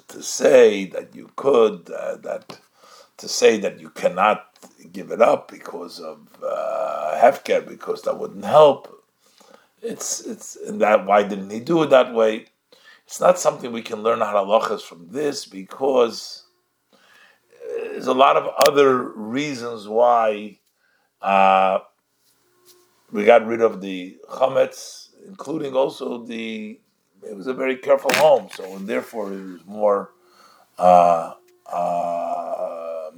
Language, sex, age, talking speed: English, male, 50-69, 140 wpm